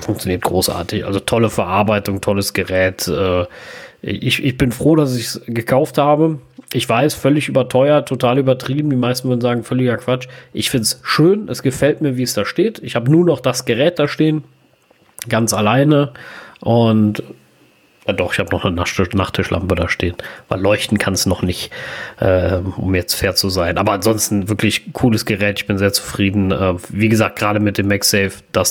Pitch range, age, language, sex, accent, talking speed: 100-125 Hz, 30-49, German, male, German, 185 wpm